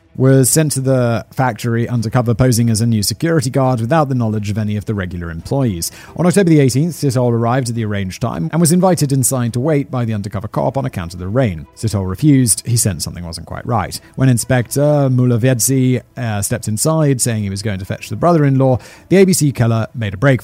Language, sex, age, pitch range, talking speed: English, male, 30-49, 100-135 Hz, 220 wpm